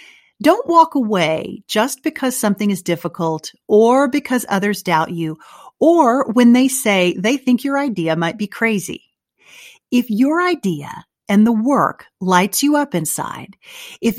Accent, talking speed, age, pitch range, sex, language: American, 150 wpm, 40-59, 180-250 Hz, female, English